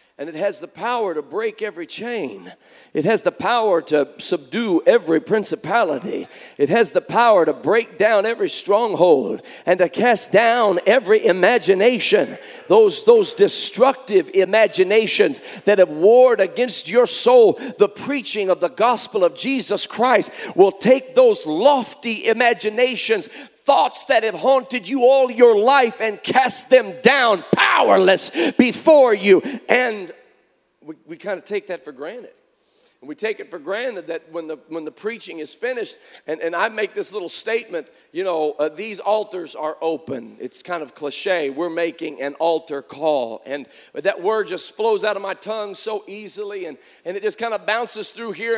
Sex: male